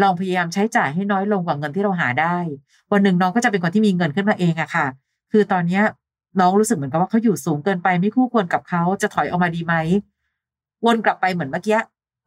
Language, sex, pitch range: Thai, female, 170-210 Hz